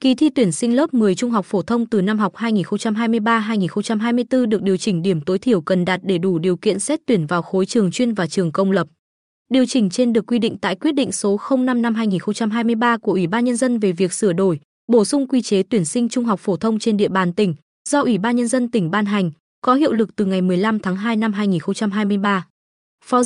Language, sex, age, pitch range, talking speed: Vietnamese, female, 20-39, 190-240 Hz, 230 wpm